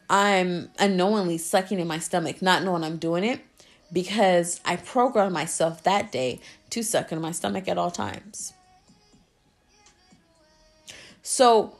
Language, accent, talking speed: English, American, 130 wpm